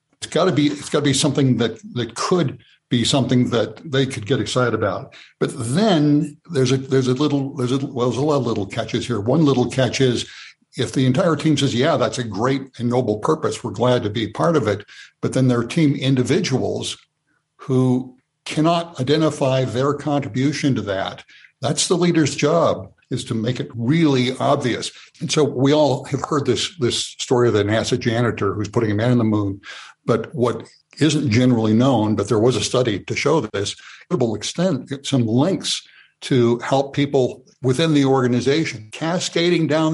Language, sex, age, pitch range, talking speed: English, male, 60-79, 120-145 Hz, 190 wpm